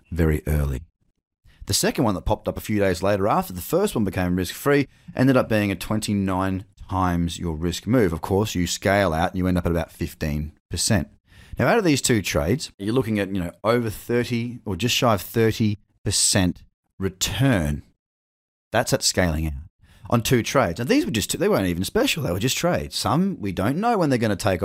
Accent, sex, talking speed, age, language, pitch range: Australian, male, 210 wpm, 30-49, English, 95-135 Hz